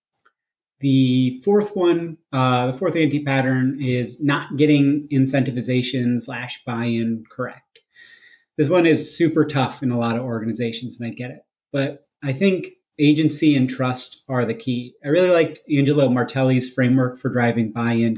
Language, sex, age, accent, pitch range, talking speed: English, male, 30-49, American, 125-150 Hz, 150 wpm